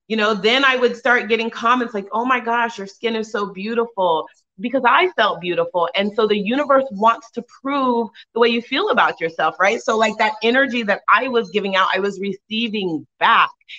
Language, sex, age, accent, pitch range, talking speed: English, female, 30-49, American, 195-255 Hz, 210 wpm